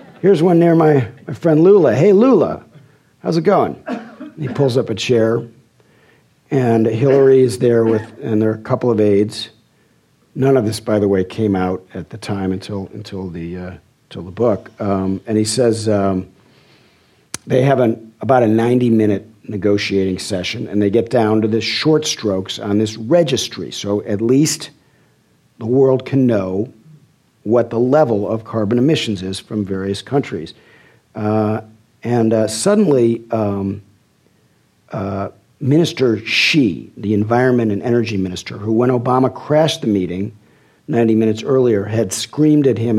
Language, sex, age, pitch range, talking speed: English, male, 50-69, 105-130 Hz, 160 wpm